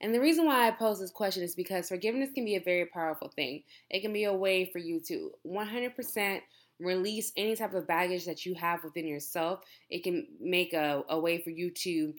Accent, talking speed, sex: American, 220 wpm, female